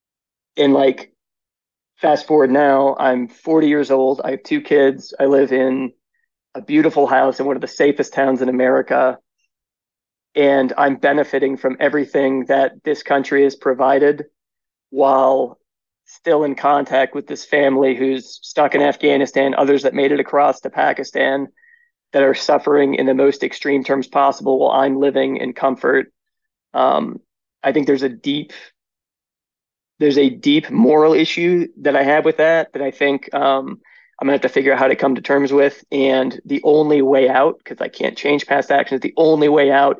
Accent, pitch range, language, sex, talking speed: American, 135-145 Hz, English, male, 175 wpm